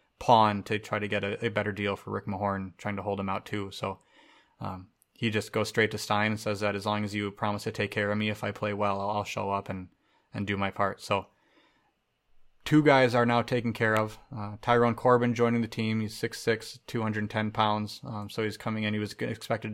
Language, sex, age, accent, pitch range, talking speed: English, male, 20-39, American, 100-115 Hz, 235 wpm